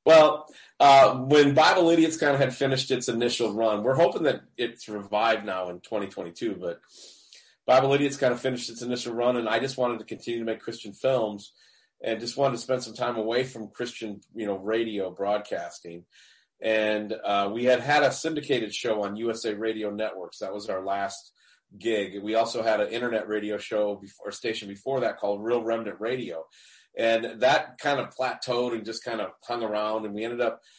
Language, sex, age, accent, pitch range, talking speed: English, male, 30-49, American, 110-135 Hz, 195 wpm